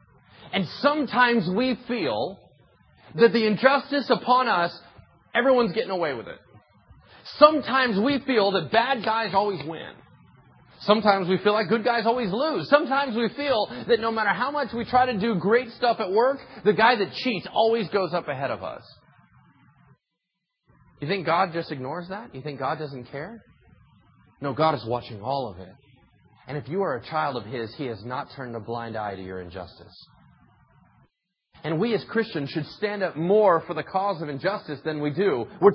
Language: English